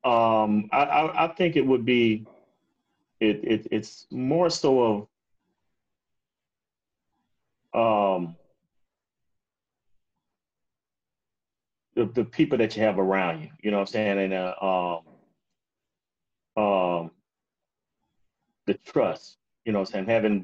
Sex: male